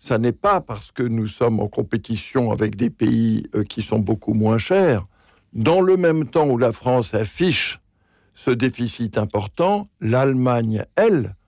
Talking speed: 155 wpm